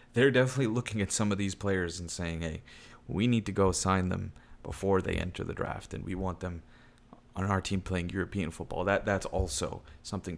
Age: 30-49